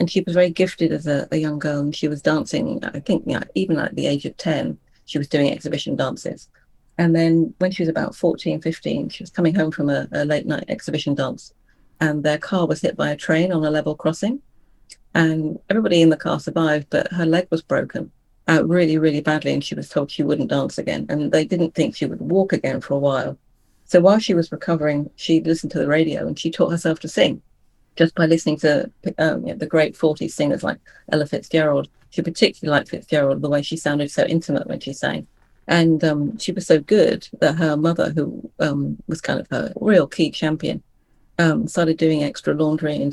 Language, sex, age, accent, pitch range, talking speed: English, female, 40-59, British, 150-170 Hz, 215 wpm